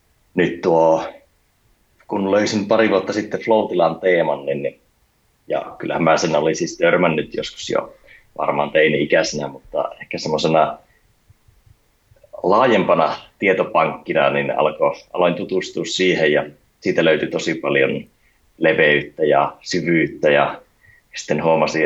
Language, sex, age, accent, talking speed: Finnish, male, 30-49, native, 120 wpm